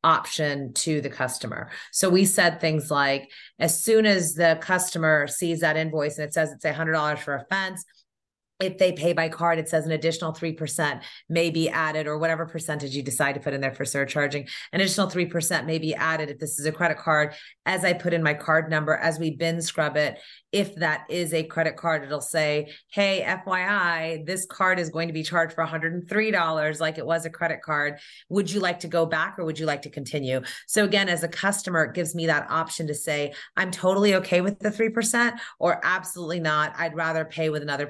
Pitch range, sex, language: 150-175 Hz, female, English